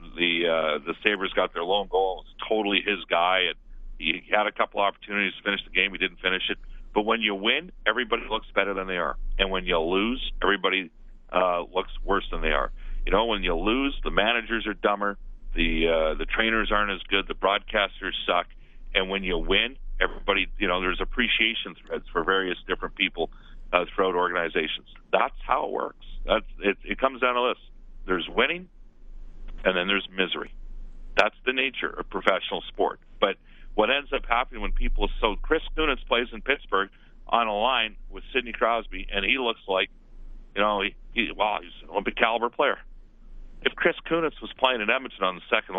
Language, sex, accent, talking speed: English, male, American, 195 wpm